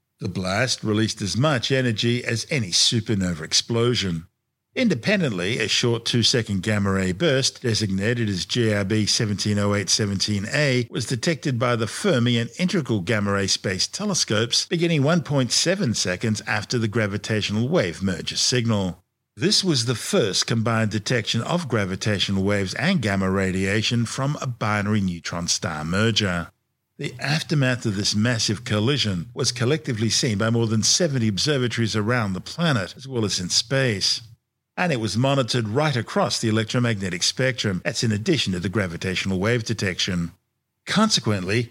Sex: male